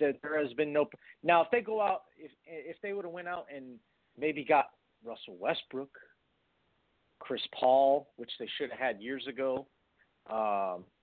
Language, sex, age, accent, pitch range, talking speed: English, male, 40-59, American, 135-190 Hz, 175 wpm